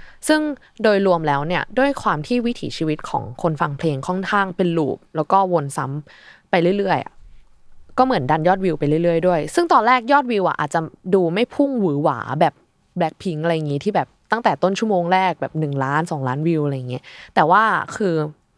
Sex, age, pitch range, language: female, 20-39, 150-195 Hz, Thai